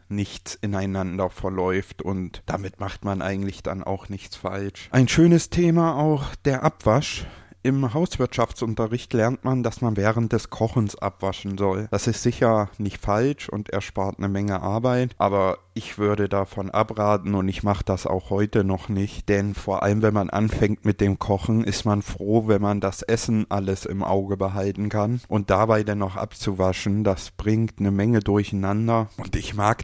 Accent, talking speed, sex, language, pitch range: German, 175 wpm, male, German, 95-110 Hz